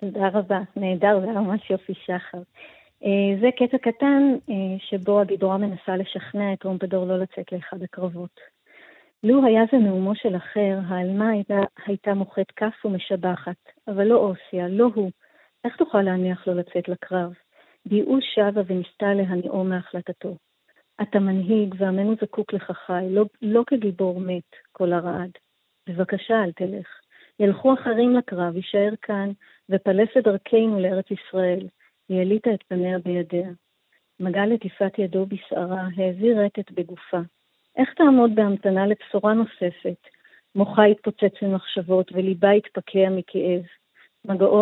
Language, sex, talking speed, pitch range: Hebrew, female, 130 wpm, 185-215 Hz